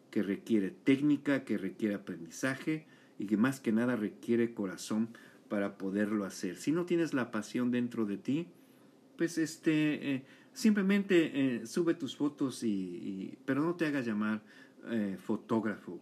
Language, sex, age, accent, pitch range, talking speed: Spanish, male, 50-69, Mexican, 110-140 Hz, 155 wpm